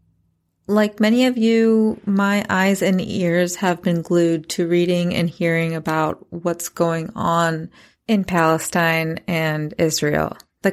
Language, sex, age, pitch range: English, female, 20-39, 170-200 Hz